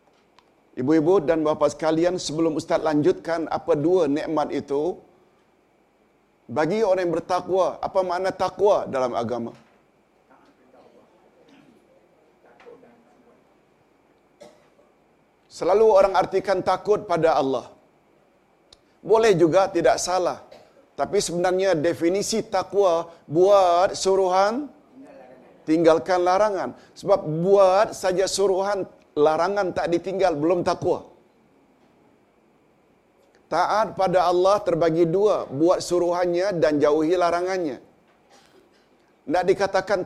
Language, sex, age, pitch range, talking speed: Malayalam, male, 50-69, 160-195 Hz, 90 wpm